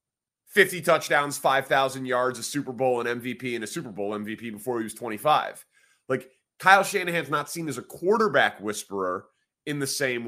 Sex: male